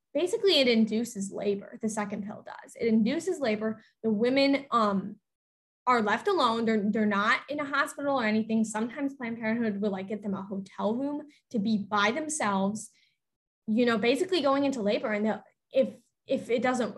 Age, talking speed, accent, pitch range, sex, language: 10-29, 180 wpm, American, 215-280 Hz, female, English